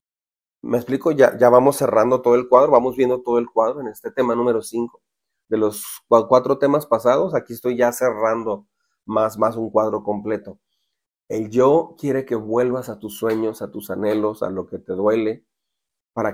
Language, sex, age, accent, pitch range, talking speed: Spanish, male, 40-59, Mexican, 100-120 Hz, 185 wpm